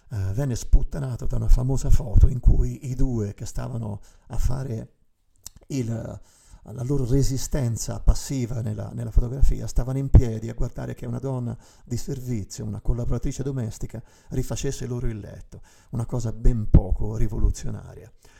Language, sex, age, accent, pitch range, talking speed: Italian, male, 50-69, native, 105-130 Hz, 140 wpm